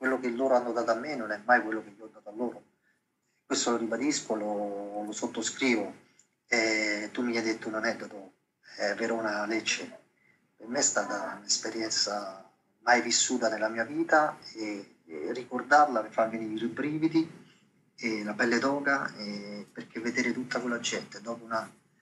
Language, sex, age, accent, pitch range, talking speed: Italian, male, 30-49, native, 110-130 Hz, 175 wpm